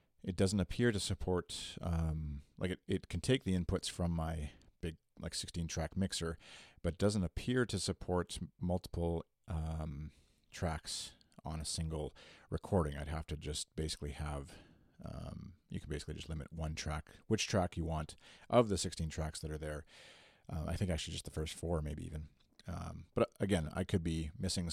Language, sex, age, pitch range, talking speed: English, male, 40-59, 80-95 Hz, 180 wpm